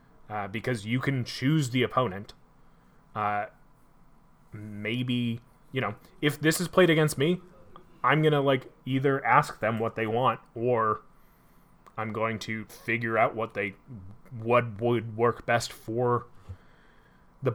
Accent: American